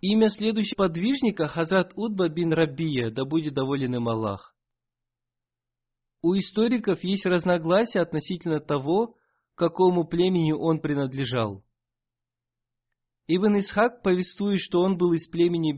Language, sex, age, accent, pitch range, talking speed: Russian, male, 20-39, native, 120-175 Hz, 120 wpm